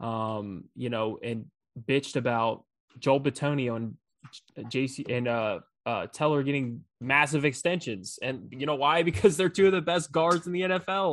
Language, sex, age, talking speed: English, male, 20-39, 165 wpm